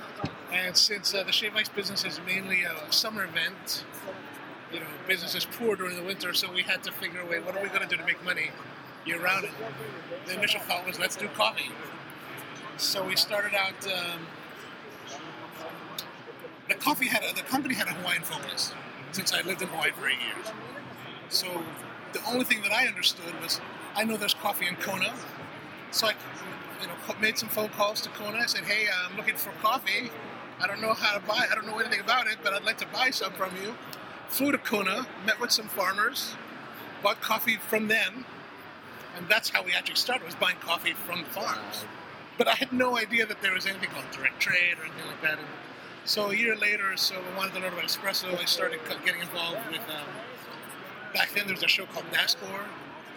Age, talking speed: 30-49, 205 wpm